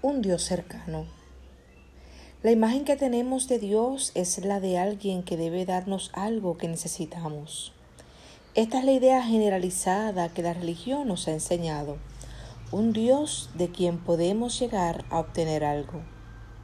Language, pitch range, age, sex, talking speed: Spanish, 160-210 Hz, 40-59, female, 140 wpm